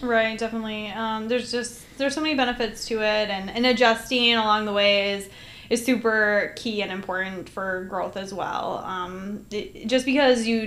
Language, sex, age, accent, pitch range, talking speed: English, female, 10-29, American, 195-235 Hz, 180 wpm